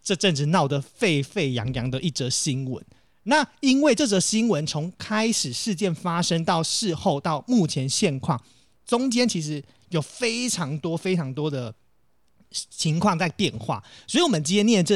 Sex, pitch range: male, 135-195 Hz